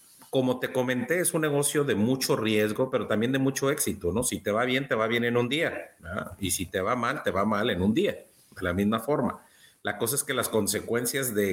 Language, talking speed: Spanish, 250 wpm